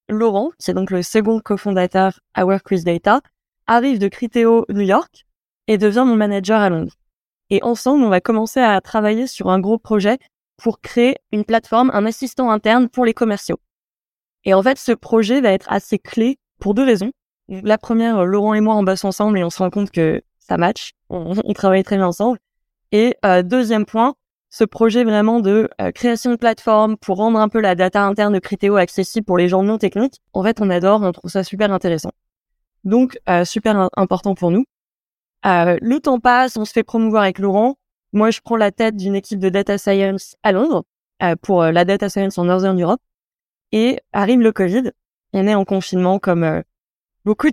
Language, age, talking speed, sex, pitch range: French, 20-39, 200 wpm, female, 190-230 Hz